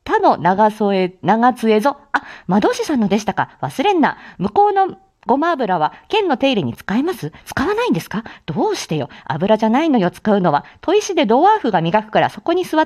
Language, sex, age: Japanese, female, 40-59